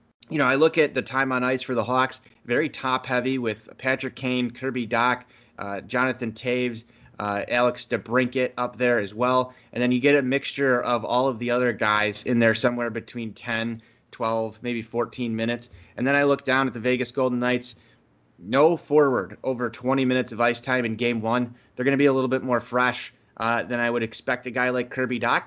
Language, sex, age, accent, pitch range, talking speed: English, male, 20-39, American, 115-130 Hz, 215 wpm